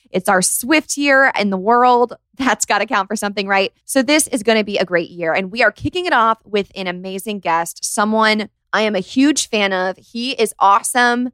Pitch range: 180-245 Hz